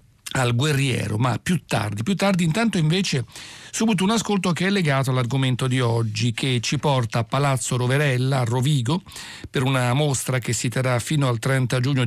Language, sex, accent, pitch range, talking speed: Italian, male, native, 120-155 Hz, 180 wpm